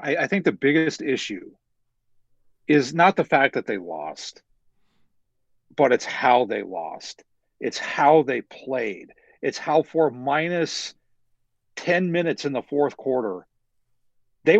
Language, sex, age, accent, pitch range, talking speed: English, male, 50-69, American, 125-165 Hz, 130 wpm